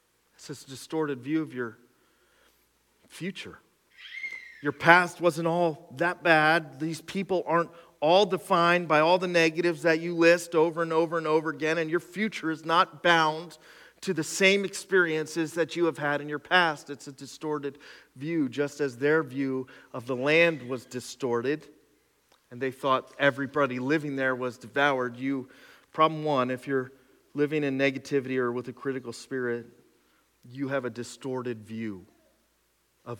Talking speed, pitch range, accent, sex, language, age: 160 wpm, 125-160 Hz, American, male, English, 40-59